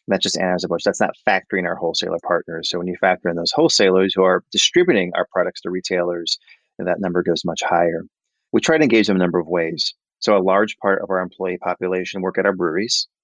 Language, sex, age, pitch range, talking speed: English, male, 30-49, 90-95 Hz, 220 wpm